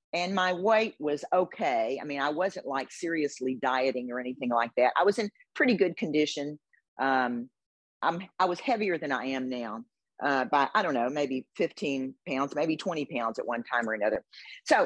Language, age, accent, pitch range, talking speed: English, 50-69, American, 130-165 Hz, 195 wpm